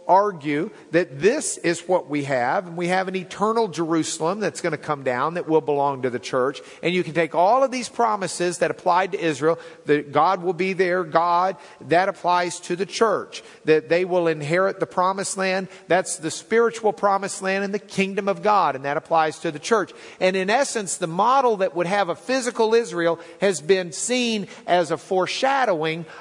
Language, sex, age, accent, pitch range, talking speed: English, male, 50-69, American, 150-195 Hz, 200 wpm